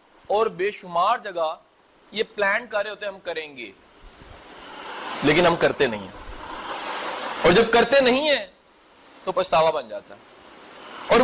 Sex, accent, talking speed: male, Indian, 135 wpm